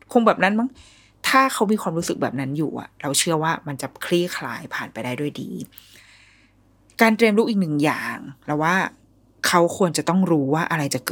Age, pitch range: 20-39, 140-195 Hz